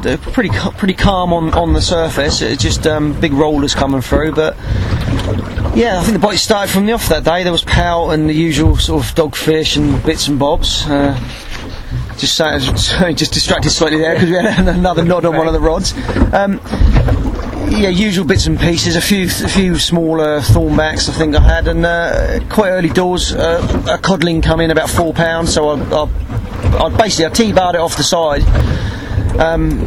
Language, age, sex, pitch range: English, 30-49, male, 140-165 Hz